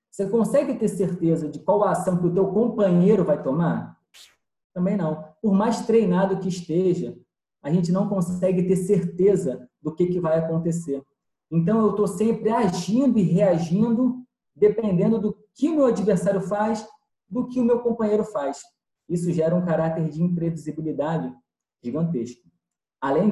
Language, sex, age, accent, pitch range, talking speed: Portuguese, male, 20-39, Brazilian, 160-205 Hz, 155 wpm